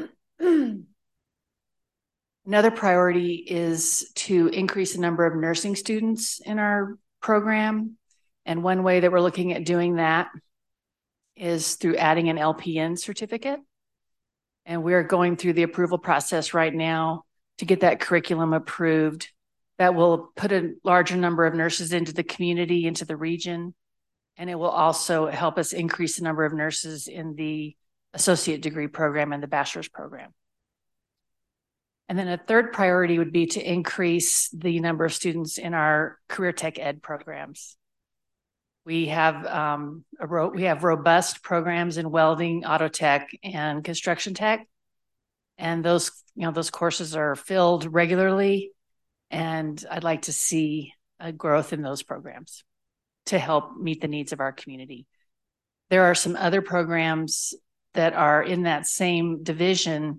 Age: 40-59